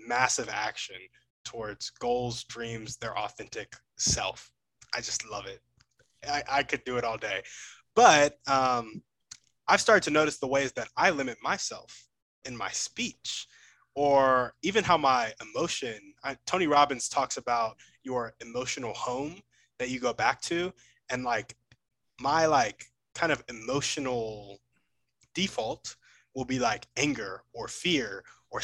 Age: 20-39